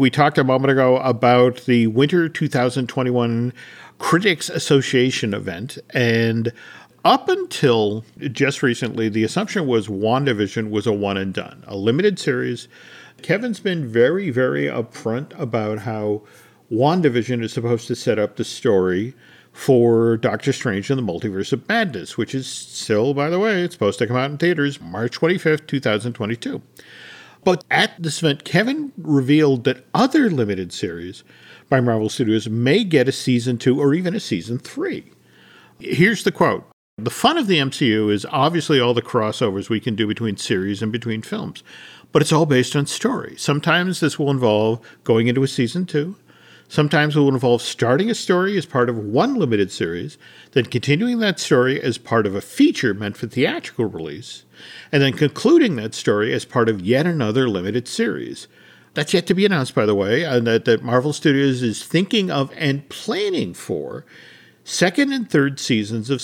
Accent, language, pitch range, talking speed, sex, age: American, English, 115-155 Hz, 170 wpm, male, 50-69